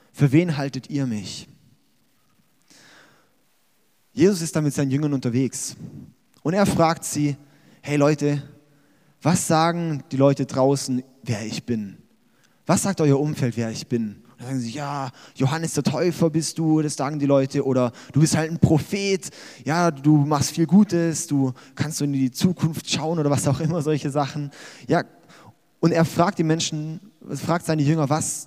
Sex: male